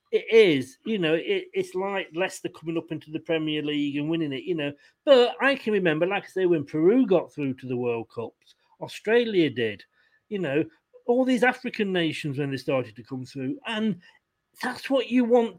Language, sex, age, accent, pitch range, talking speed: English, male, 40-59, British, 150-225 Hz, 200 wpm